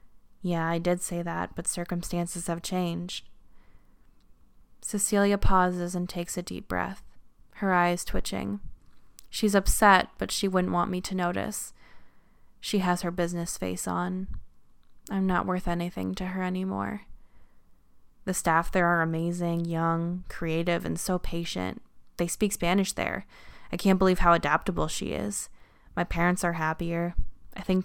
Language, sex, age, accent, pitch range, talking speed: English, female, 20-39, American, 165-185 Hz, 145 wpm